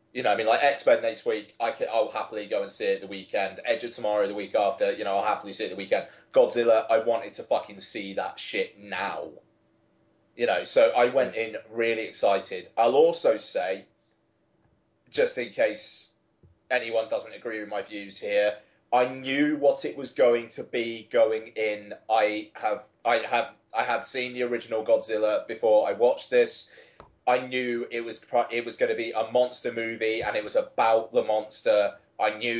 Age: 20-39